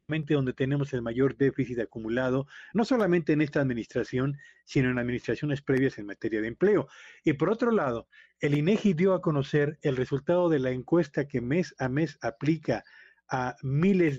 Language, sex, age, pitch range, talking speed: Spanish, male, 40-59, 130-165 Hz, 170 wpm